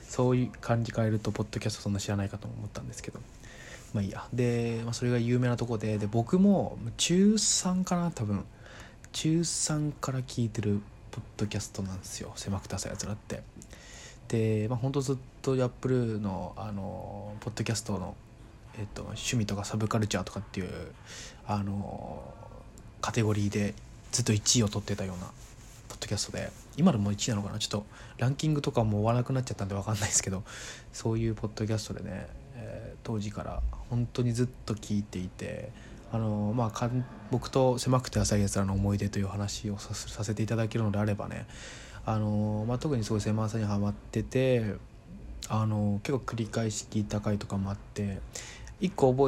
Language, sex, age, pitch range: Japanese, male, 20-39, 105-120 Hz